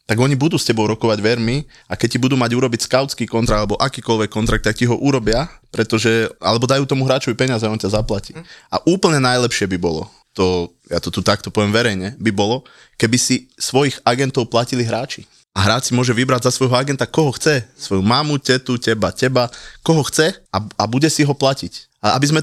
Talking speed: 210 wpm